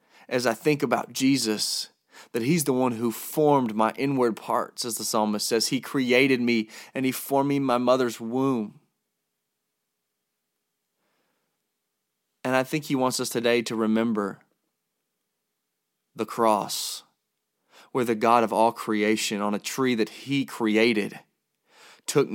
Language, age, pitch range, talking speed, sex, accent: English, 30-49, 110-130 Hz, 140 wpm, male, American